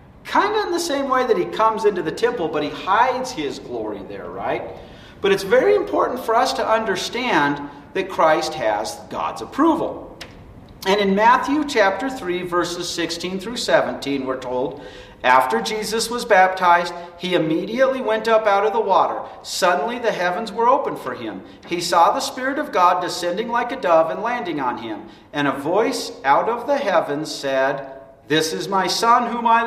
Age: 50-69